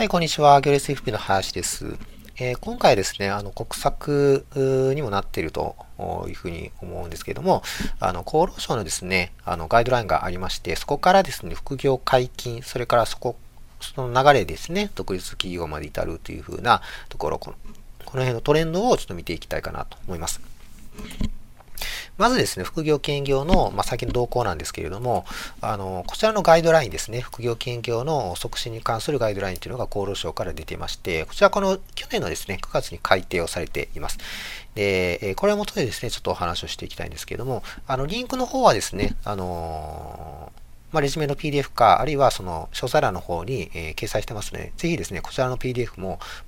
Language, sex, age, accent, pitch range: Japanese, male, 40-59, native, 95-145 Hz